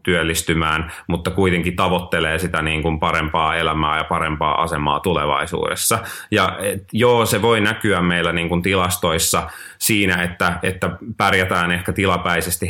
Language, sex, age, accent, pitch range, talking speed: Finnish, male, 30-49, native, 85-100 Hz, 135 wpm